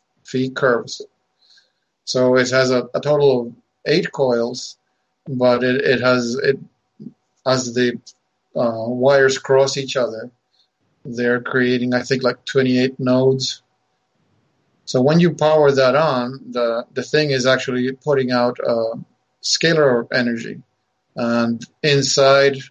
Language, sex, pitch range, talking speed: English, male, 125-135 Hz, 125 wpm